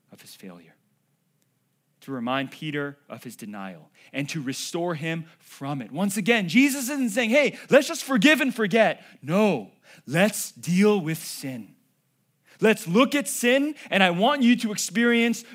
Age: 30-49